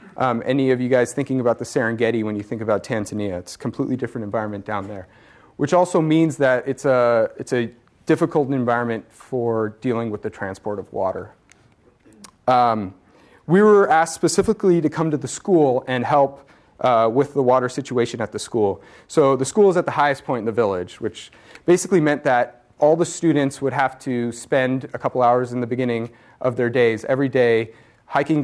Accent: American